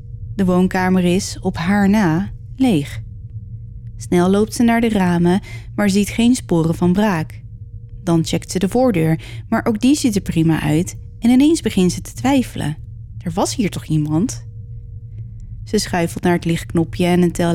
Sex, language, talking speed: female, Dutch, 170 wpm